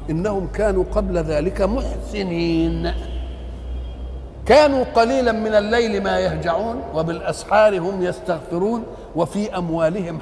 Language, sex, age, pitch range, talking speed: Arabic, male, 50-69, 175-230 Hz, 95 wpm